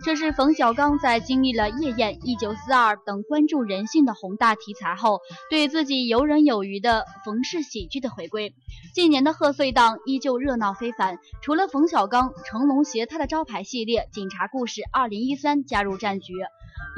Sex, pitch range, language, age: female, 210-285 Hz, Chinese, 20-39